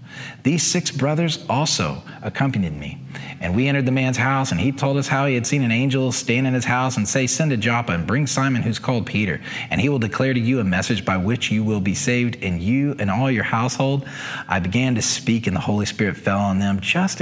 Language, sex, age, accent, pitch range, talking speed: English, male, 40-59, American, 110-150 Hz, 240 wpm